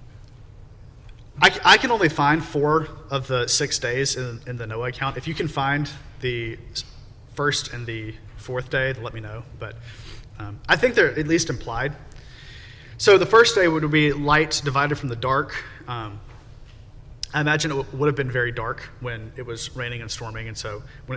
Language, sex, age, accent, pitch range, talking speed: English, male, 30-49, American, 115-150 Hz, 180 wpm